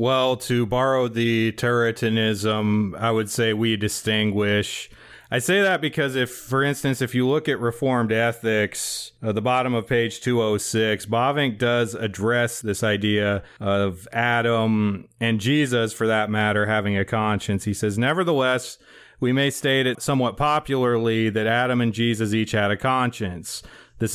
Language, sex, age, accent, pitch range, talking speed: English, male, 30-49, American, 110-130 Hz, 155 wpm